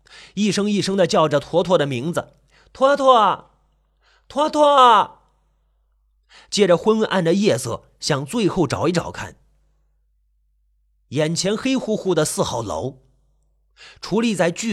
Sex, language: male, Chinese